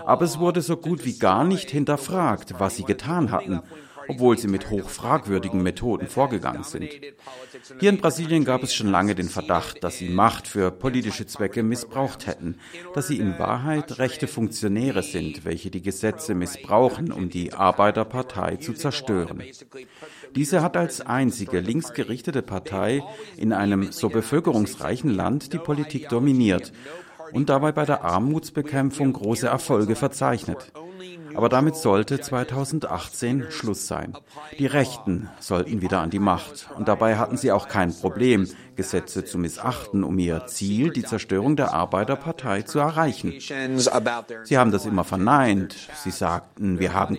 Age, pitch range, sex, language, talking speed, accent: 50-69, 95-140 Hz, male, German, 150 wpm, German